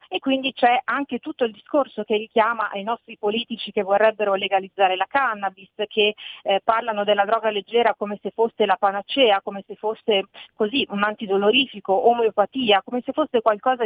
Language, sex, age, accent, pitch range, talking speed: Italian, female, 40-59, native, 200-235 Hz, 170 wpm